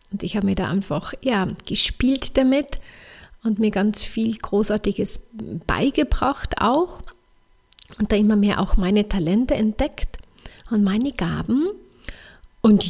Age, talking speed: 30-49, 125 wpm